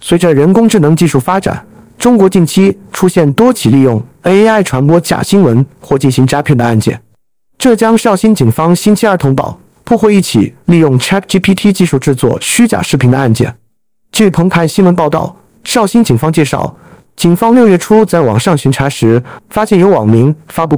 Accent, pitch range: native, 135-195 Hz